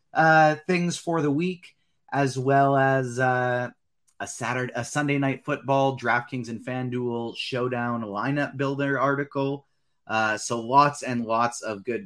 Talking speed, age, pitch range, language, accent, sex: 145 wpm, 30-49, 100-135 Hz, English, American, male